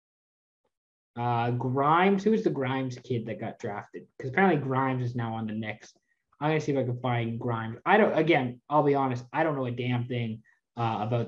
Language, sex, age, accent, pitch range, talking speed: English, male, 20-39, American, 120-170 Hz, 210 wpm